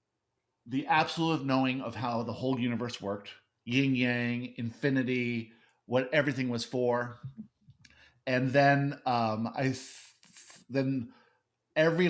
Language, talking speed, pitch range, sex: English, 110 wpm, 120-150 Hz, male